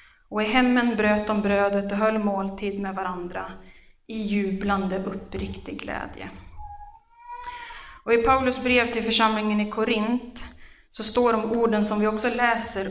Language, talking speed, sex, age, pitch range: Swedish, 145 wpm, female, 20-39, 195-230 Hz